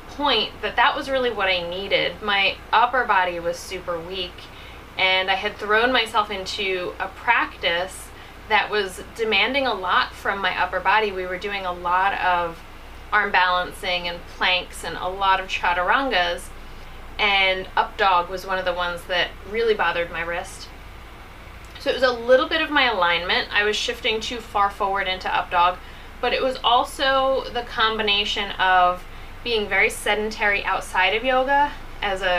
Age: 20-39